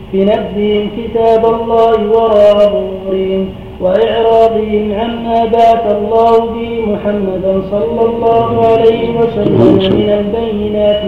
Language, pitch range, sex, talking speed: Arabic, 195-230 Hz, male, 85 wpm